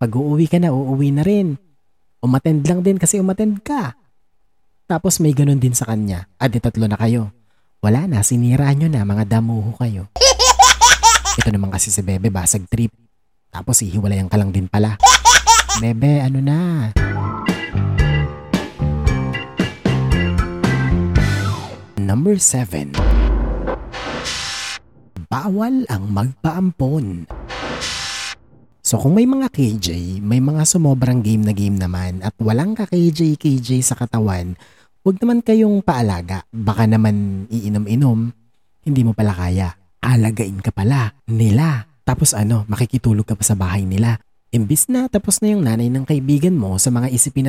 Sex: male